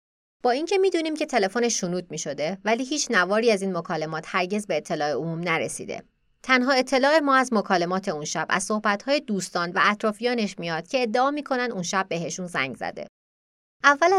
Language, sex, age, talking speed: Persian, female, 30-49, 170 wpm